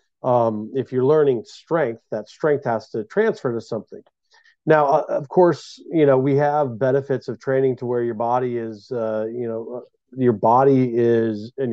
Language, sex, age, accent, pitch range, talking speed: English, male, 40-59, American, 115-135 Hz, 180 wpm